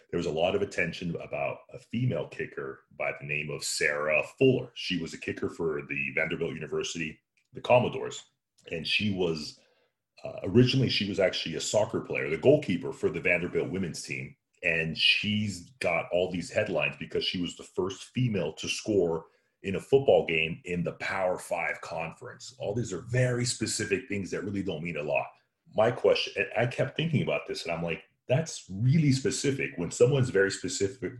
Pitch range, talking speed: 90-135 Hz, 185 wpm